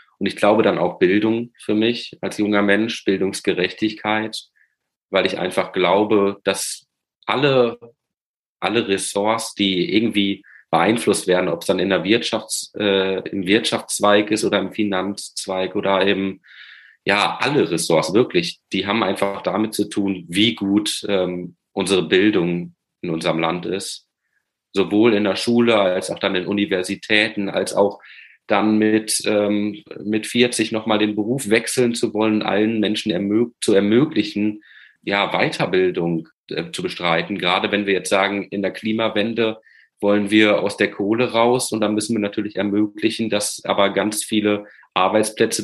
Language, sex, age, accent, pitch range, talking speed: German, male, 30-49, German, 100-110 Hz, 150 wpm